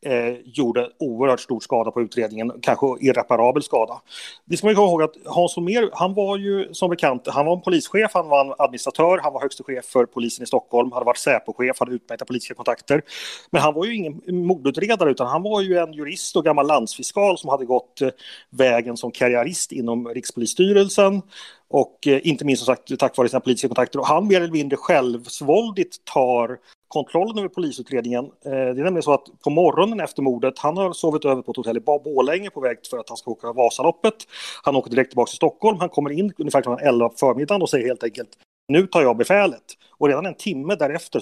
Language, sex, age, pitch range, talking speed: Swedish, male, 30-49, 125-175 Hz, 205 wpm